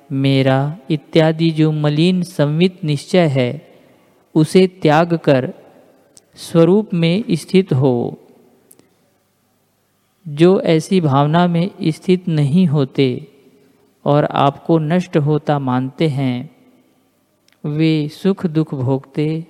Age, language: 50-69, Hindi